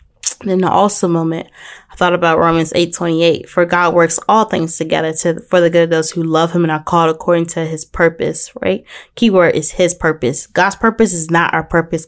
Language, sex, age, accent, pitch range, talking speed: English, female, 20-39, American, 155-180 Hz, 210 wpm